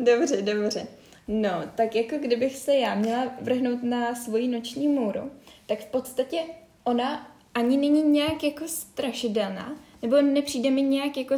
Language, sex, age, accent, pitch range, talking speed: Czech, female, 10-29, native, 210-255 Hz, 150 wpm